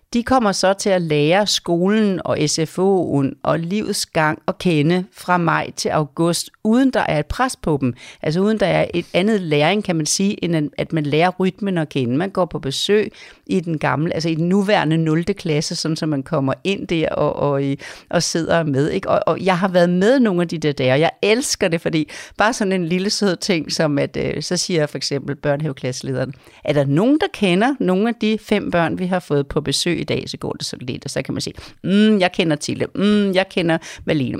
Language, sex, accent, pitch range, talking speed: Danish, female, native, 155-200 Hz, 230 wpm